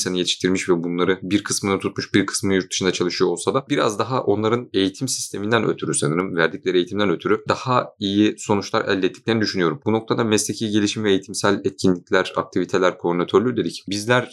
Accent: native